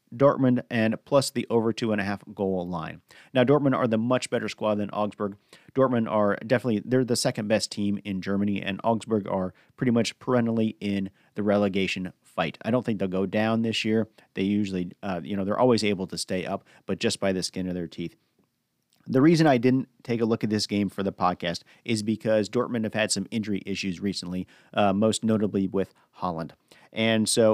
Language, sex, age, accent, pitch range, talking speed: English, male, 40-59, American, 100-115 Hz, 210 wpm